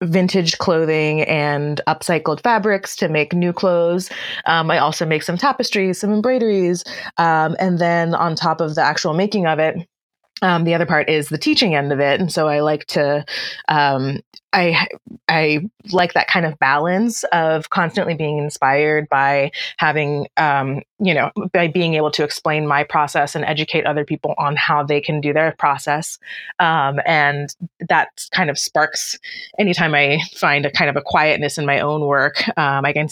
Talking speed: 180 wpm